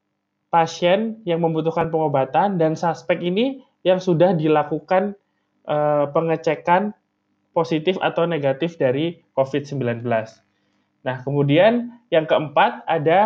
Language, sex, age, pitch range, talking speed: Indonesian, male, 20-39, 145-185 Hz, 100 wpm